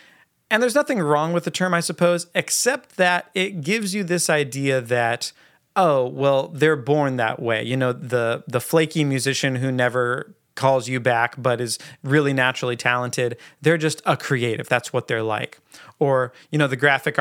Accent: American